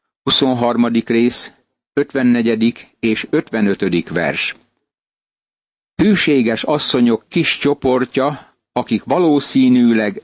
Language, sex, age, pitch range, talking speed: Hungarian, male, 60-79, 115-140 Hz, 70 wpm